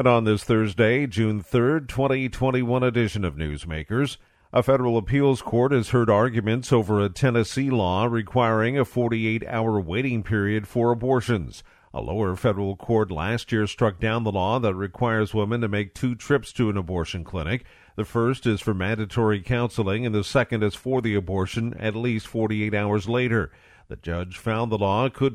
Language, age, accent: English, 50-69, American